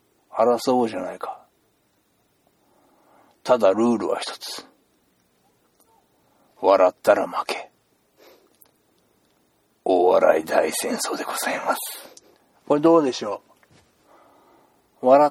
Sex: male